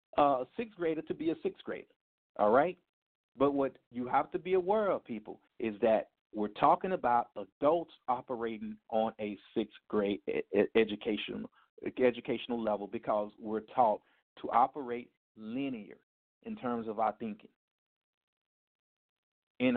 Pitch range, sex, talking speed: 120-185 Hz, male, 140 wpm